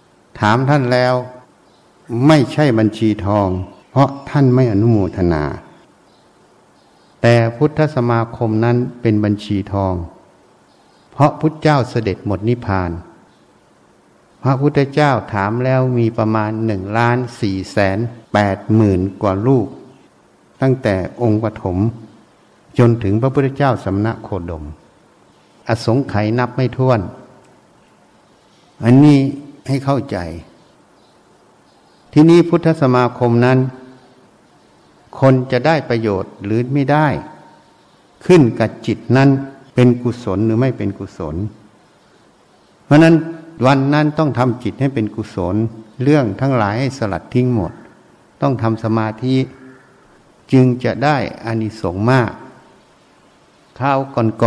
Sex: male